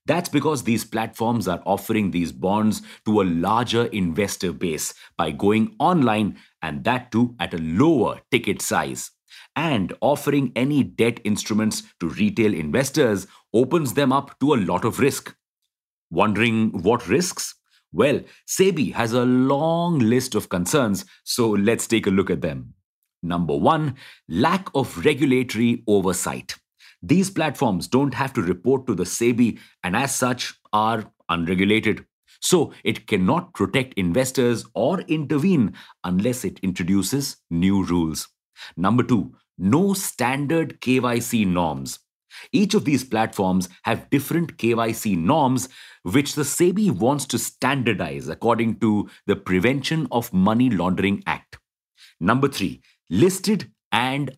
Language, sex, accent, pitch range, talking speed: English, male, Indian, 100-135 Hz, 135 wpm